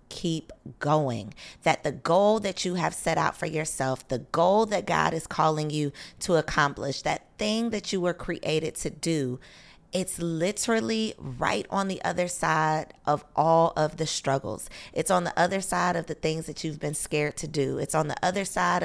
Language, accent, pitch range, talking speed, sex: English, American, 150-200 Hz, 190 wpm, female